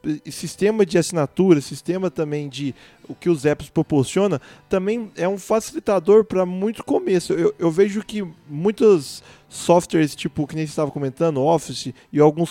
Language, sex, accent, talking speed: Portuguese, male, Brazilian, 160 wpm